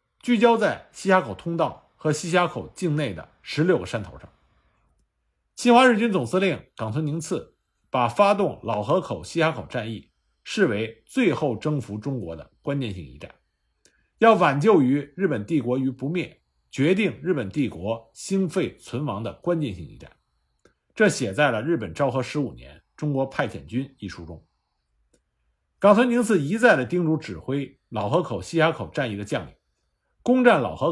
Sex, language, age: male, Chinese, 50-69